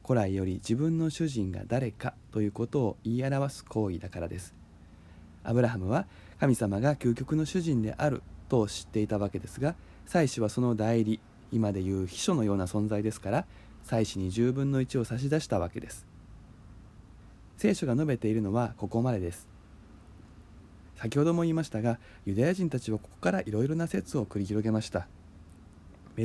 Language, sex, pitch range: Japanese, male, 95-130 Hz